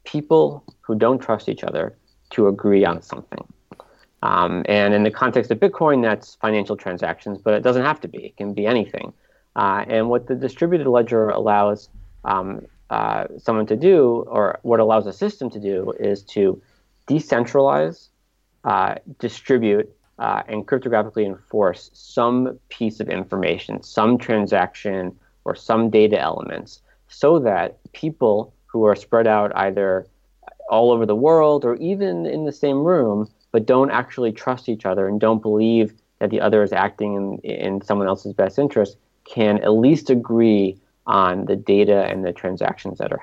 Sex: male